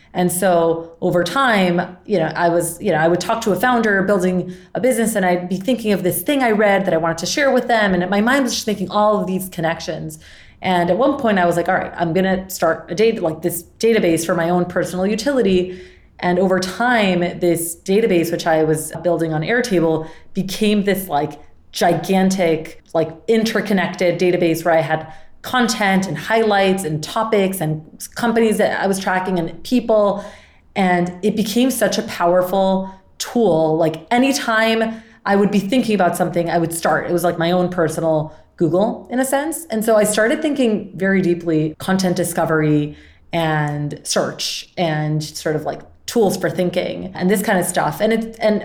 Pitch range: 170-215 Hz